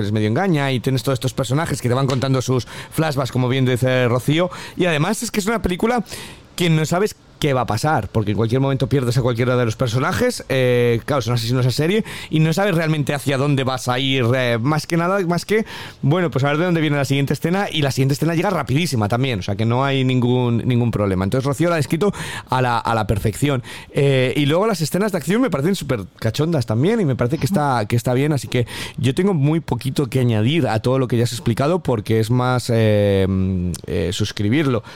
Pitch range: 115-145 Hz